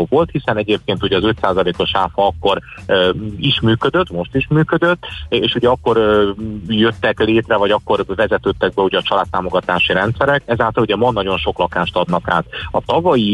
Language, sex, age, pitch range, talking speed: Hungarian, male, 30-49, 90-115 Hz, 170 wpm